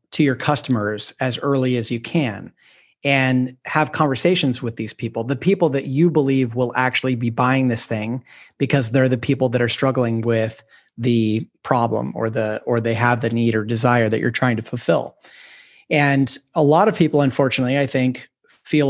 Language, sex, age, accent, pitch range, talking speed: English, male, 30-49, American, 125-150 Hz, 185 wpm